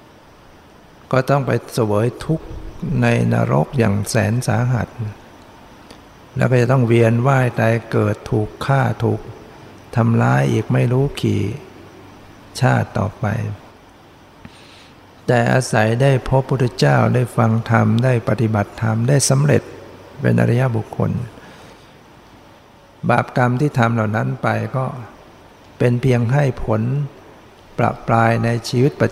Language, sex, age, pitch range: Thai, male, 60-79, 110-125 Hz